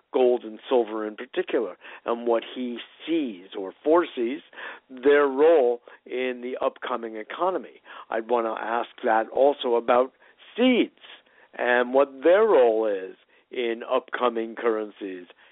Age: 60-79